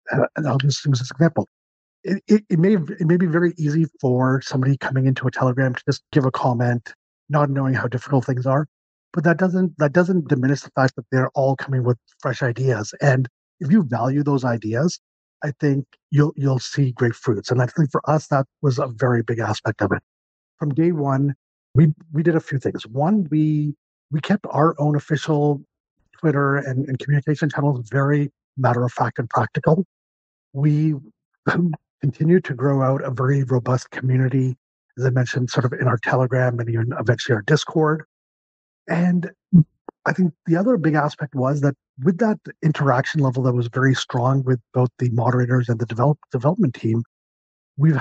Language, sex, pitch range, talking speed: English, male, 125-155 Hz, 185 wpm